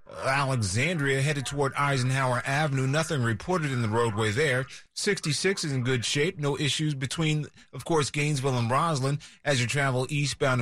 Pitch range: 125-150 Hz